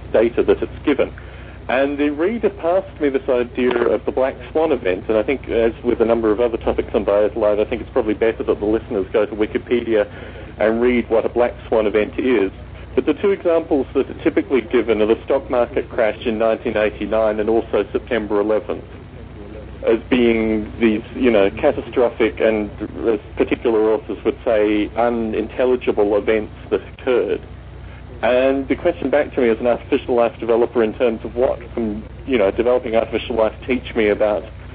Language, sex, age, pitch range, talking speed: English, male, 40-59, 105-125 Hz, 185 wpm